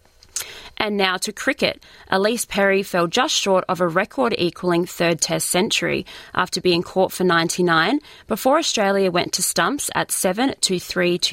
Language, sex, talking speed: English, female, 150 wpm